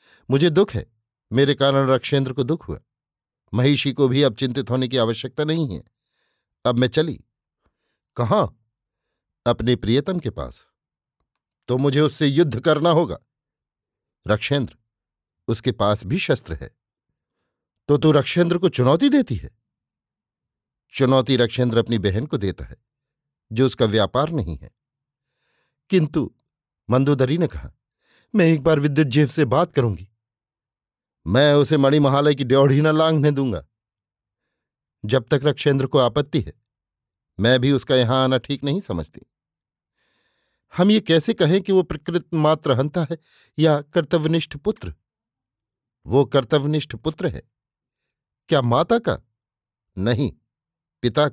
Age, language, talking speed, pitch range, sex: 50-69, Hindi, 135 wpm, 120-155 Hz, male